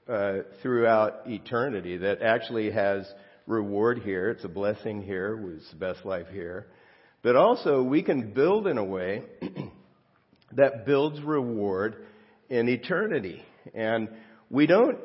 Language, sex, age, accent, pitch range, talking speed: English, male, 50-69, American, 100-125 Hz, 130 wpm